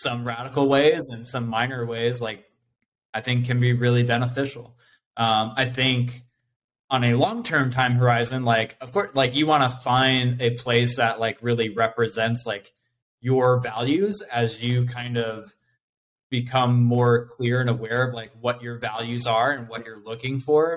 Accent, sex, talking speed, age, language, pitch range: American, male, 170 wpm, 20-39, English, 115-130 Hz